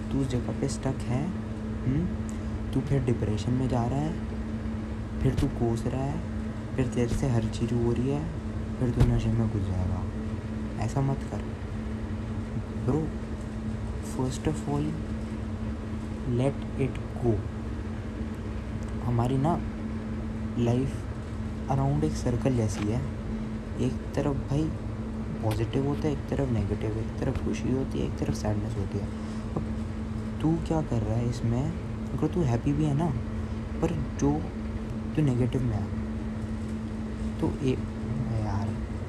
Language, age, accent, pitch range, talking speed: Hindi, 20-39, native, 110-120 Hz, 140 wpm